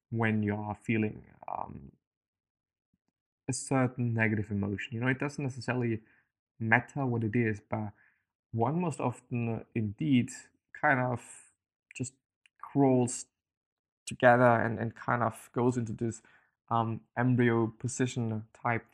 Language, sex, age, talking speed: English, male, 20-39, 125 wpm